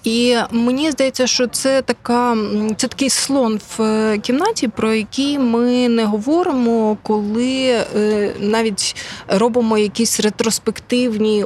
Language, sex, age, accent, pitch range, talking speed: Ukrainian, female, 20-39, native, 185-245 Hz, 115 wpm